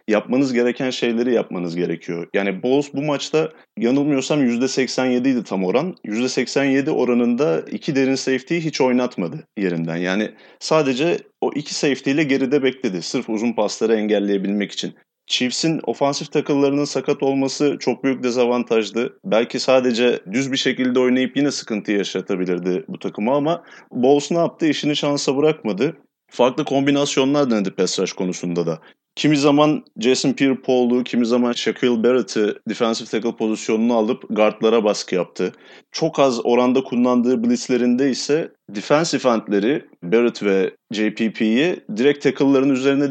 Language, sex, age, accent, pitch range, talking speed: Turkish, male, 30-49, native, 115-140 Hz, 130 wpm